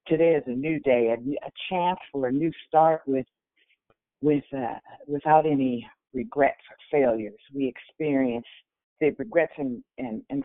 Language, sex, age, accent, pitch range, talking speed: English, female, 50-69, American, 120-145 Hz, 155 wpm